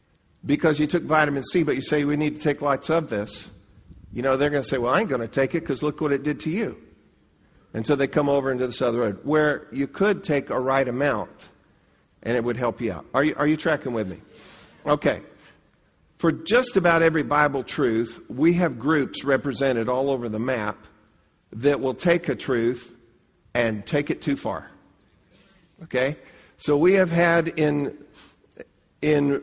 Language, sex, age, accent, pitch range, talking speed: English, male, 50-69, American, 120-155 Hz, 195 wpm